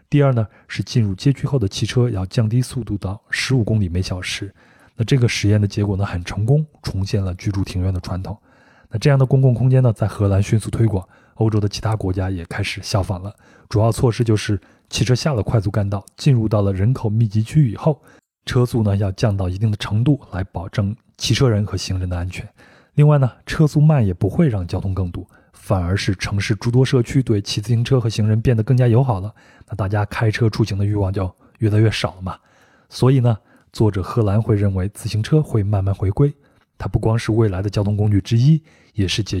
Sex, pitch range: male, 100-120 Hz